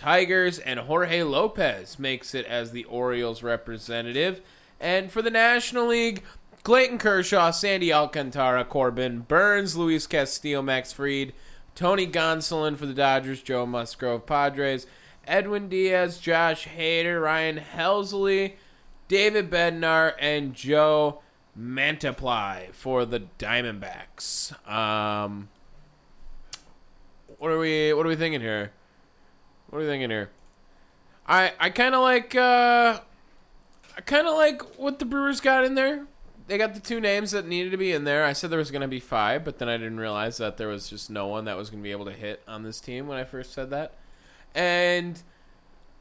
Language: English